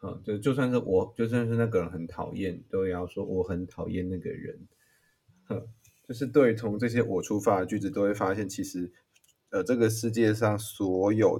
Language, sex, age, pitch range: Chinese, male, 20-39, 90-115 Hz